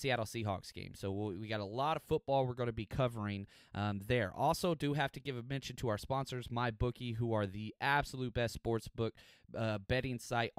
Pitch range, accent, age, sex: 110-150 Hz, American, 30-49, male